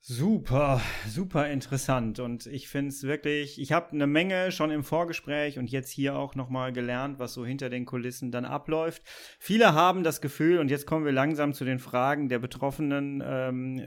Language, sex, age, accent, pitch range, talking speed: German, male, 30-49, German, 130-150 Hz, 185 wpm